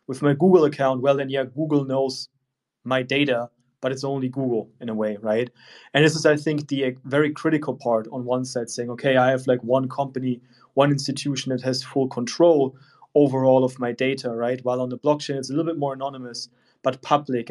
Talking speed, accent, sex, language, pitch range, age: 215 wpm, German, male, English, 125-145 Hz, 30-49